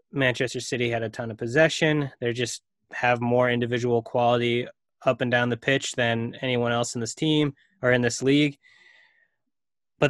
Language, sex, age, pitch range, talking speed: English, male, 20-39, 120-145 Hz, 170 wpm